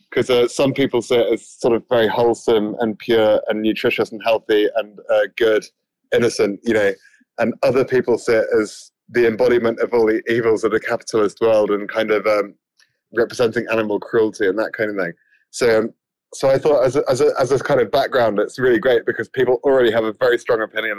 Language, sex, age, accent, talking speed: English, male, 20-39, British, 220 wpm